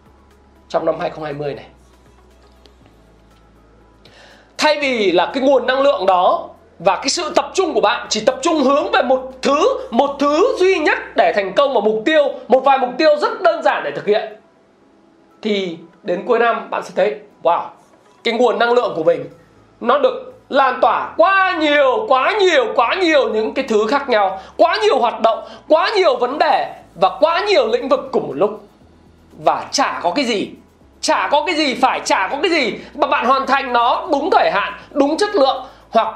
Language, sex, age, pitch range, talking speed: Vietnamese, male, 20-39, 220-325 Hz, 195 wpm